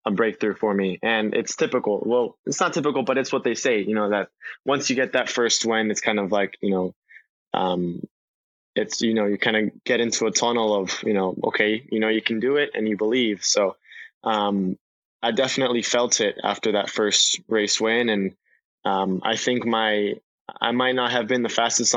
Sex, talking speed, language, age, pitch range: male, 210 wpm, English, 20-39, 105-120 Hz